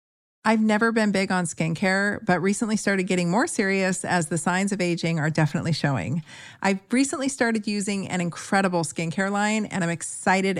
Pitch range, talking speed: 165-210 Hz, 175 wpm